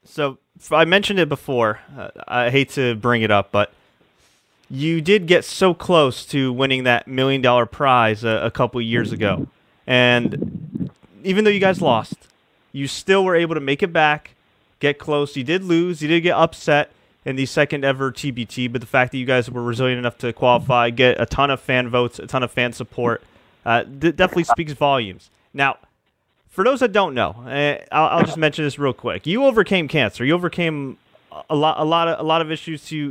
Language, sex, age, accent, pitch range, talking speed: English, male, 30-49, American, 125-155 Hz, 200 wpm